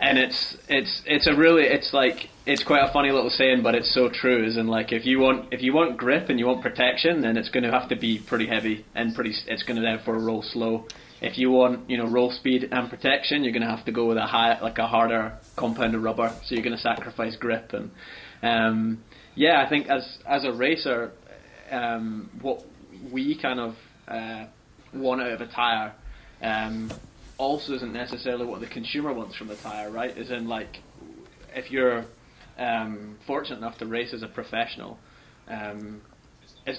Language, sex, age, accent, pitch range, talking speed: English, male, 20-39, British, 110-125 Hz, 205 wpm